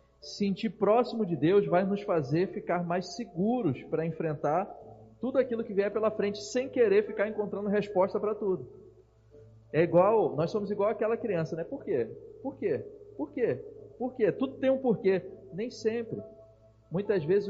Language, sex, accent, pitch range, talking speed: Portuguese, male, Brazilian, 170-230 Hz, 175 wpm